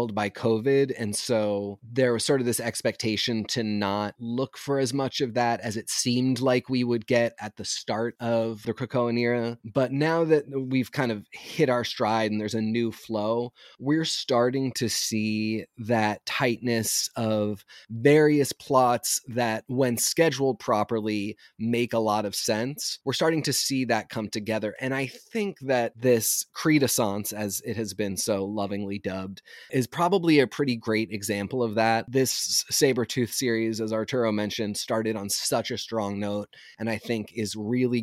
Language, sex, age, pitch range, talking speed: English, male, 30-49, 110-130 Hz, 170 wpm